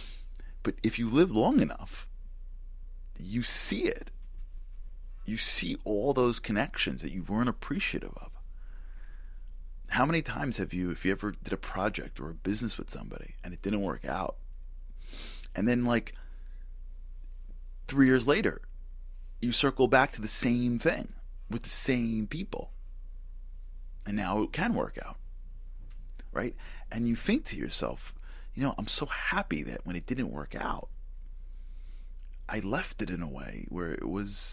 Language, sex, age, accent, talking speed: English, male, 30-49, American, 155 wpm